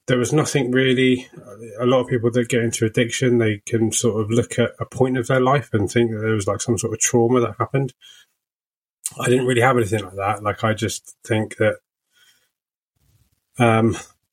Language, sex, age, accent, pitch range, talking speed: English, male, 20-39, British, 105-120 Hz, 200 wpm